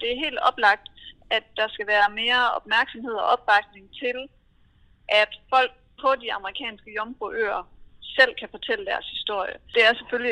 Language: Danish